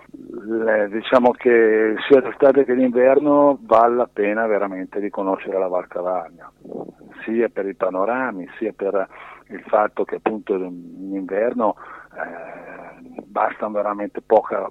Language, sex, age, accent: Italian, male, 50-69, native